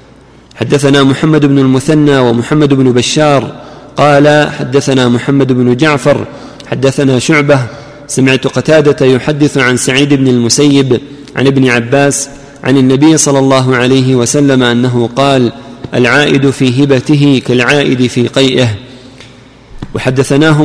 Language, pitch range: Arabic, 125-145 Hz